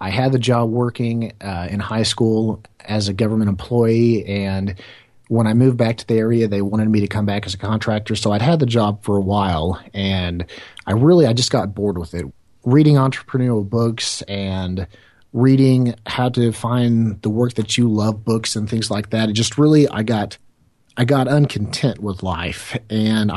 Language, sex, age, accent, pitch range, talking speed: English, male, 30-49, American, 100-120 Hz, 190 wpm